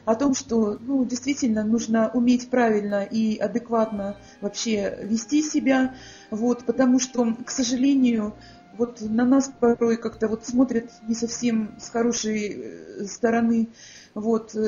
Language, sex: Russian, female